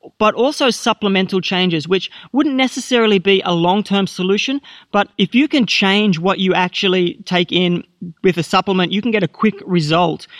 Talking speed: 175 wpm